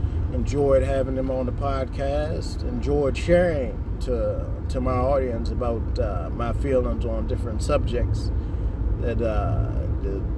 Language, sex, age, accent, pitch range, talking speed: English, male, 30-49, American, 85-115 Hz, 125 wpm